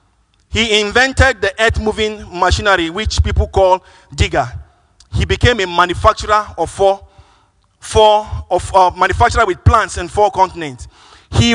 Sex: male